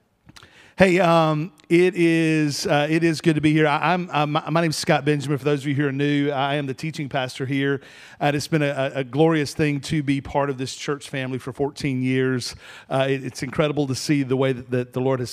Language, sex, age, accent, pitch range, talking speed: English, male, 40-59, American, 130-155 Hz, 245 wpm